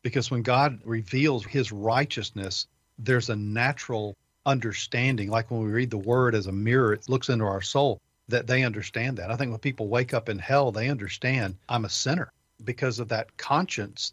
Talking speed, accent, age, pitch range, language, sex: 190 wpm, American, 40-59, 115-135 Hz, English, male